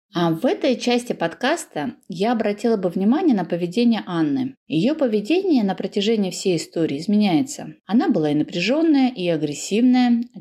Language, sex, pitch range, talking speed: Russian, female, 190-255 Hz, 150 wpm